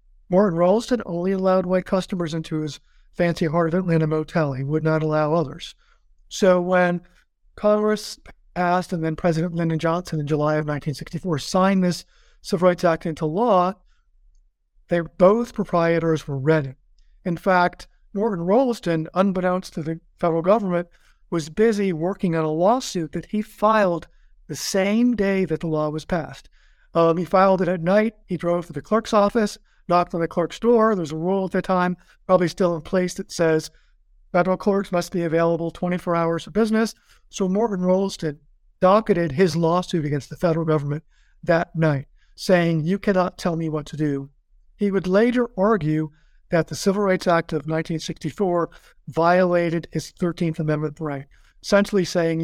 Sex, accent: male, American